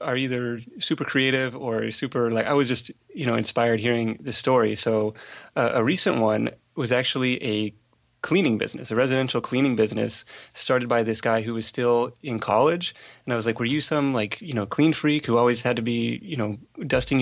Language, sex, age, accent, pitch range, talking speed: English, male, 30-49, American, 115-140 Hz, 205 wpm